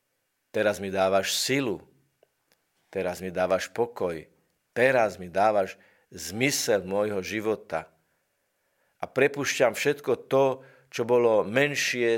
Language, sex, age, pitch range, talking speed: Slovak, male, 50-69, 95-120 Hz, 105 wpm